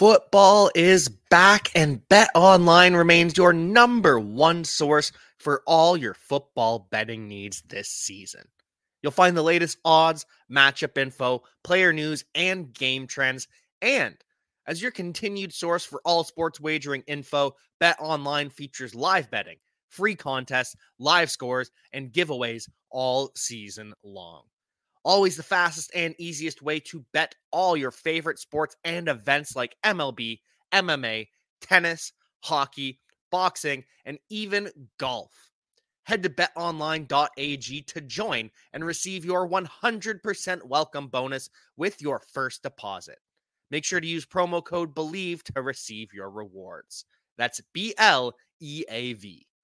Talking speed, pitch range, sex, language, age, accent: 130 wpm, 135-175 Hz, male, English, 20-39, American